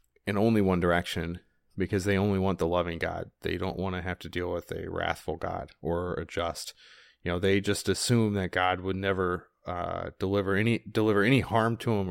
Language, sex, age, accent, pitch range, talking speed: English, male, 30-49, American, 85-105 Hz, 210 wpm